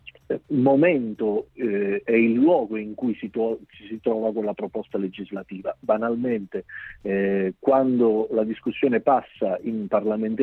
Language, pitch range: Italian, 105-135 Hz